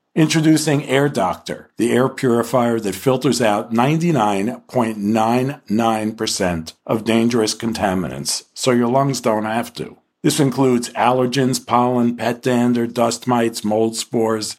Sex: male